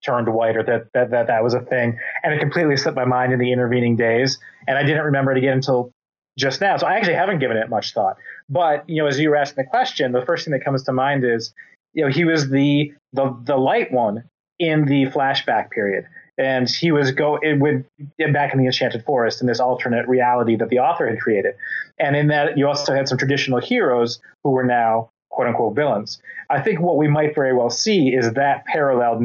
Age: 30-49